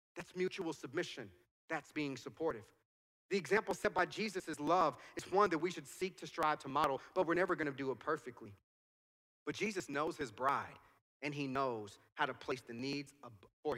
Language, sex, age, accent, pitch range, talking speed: English, male, 30-49, American, 140-195 Hz, 190 wpm